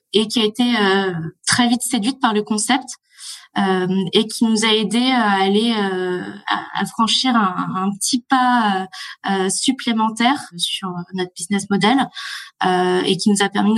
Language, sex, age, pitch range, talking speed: French, female, 20-39, 185-220 Hz, 140 wpm